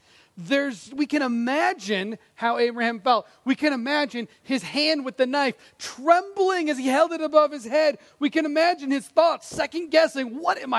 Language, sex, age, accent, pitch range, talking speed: English, male, 30-49, American, 230-320 Hz, 180 wpm